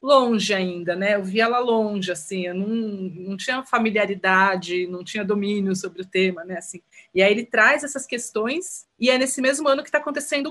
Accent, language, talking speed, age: Brazilian, Portuguese, 200 wpm, 30-49